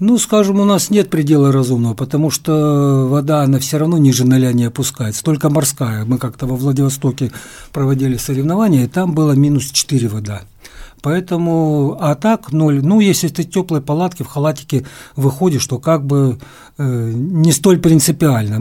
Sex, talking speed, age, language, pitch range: male, 165 wpm, 60-79, Russian, 135-165 Hz